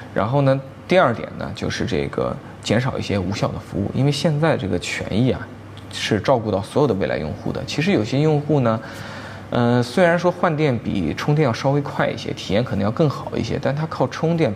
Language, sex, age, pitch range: Chinese, male, 20-39, 100-130 Hz